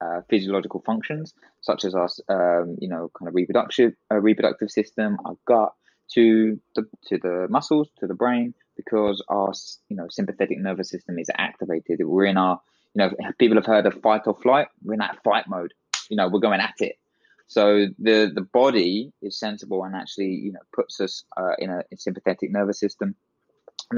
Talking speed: 185 wpm